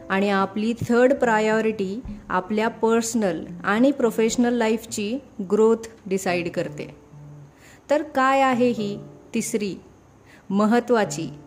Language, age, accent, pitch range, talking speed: Marathi, 30-49, native, 195-240 Hz, 95 wpm